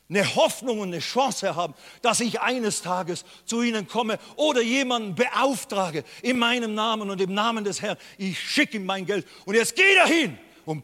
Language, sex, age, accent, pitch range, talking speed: German, male, 50-69, German, 155-215 Hz, 190 wpm